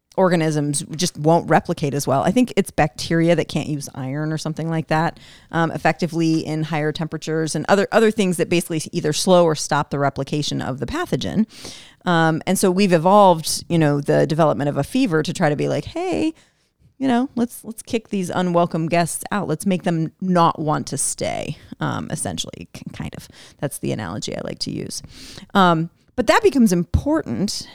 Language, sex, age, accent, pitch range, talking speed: English, female, 30-49, American, 150-190 Hz, 190 wpm